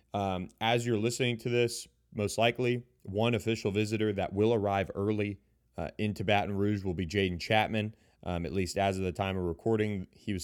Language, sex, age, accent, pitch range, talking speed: English, male, 30-49, American, 95-115 Hz, 195 wpm